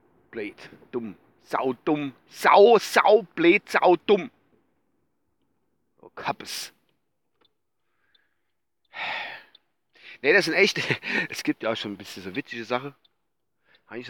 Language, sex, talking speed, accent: German, male, 105 wpm, German